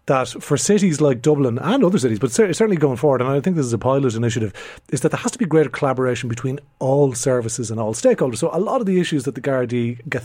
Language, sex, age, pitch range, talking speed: English, male, 30-49, 120-150 Hz, 260 wpm